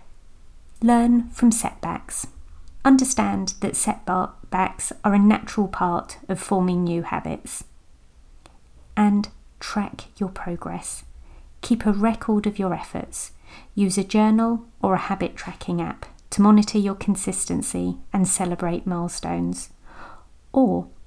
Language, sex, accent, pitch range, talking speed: English, female, British, 175-210 Hz, 115 wpm